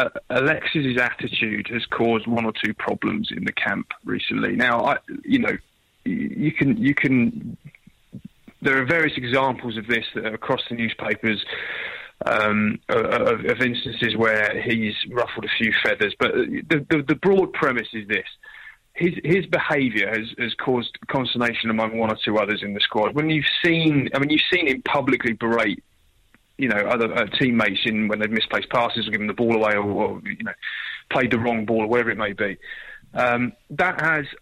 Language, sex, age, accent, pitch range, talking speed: English, male, 20-39, British, 115-155 Hz, 185 wpm